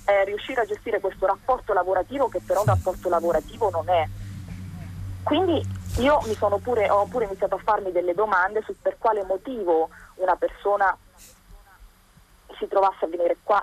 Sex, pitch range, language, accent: female, 160-195 Hz, Italian, native